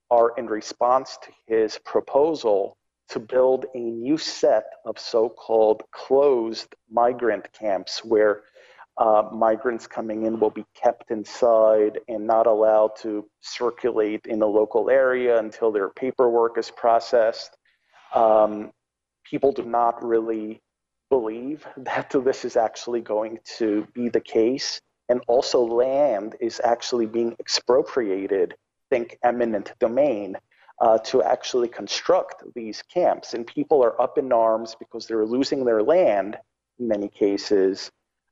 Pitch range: 110-130 Hz